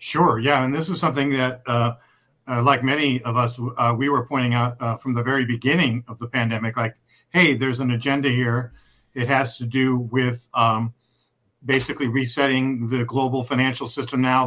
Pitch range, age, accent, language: 120-140 Hz, 50-69, American, English